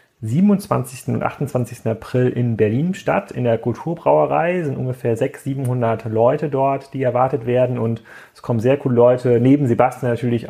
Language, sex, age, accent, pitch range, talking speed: German, male, 30-49, German, 110-135 Hz, 165 wpm